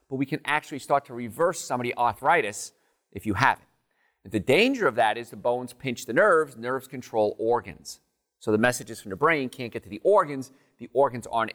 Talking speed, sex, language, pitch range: 215 wpm, male, English, 115-150 Hz